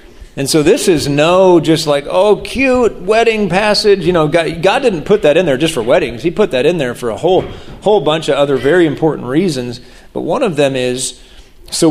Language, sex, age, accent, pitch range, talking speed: English, male, 40-59, American, 140-190 Hz, 220 wpm